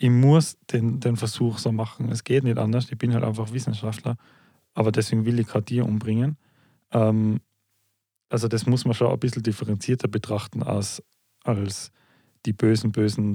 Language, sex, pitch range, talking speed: German, male, 110-125 Hz, 170 wpm